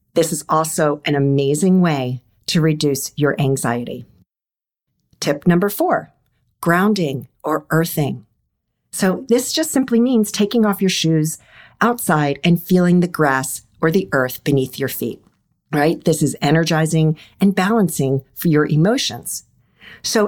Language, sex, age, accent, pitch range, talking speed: English, female, 50-69, American, 155-220 Hz, 135 wpm